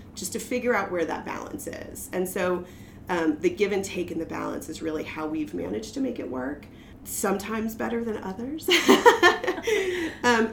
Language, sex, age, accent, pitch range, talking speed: English, female, 30-49, American, 165-225 Hz, 180 wpm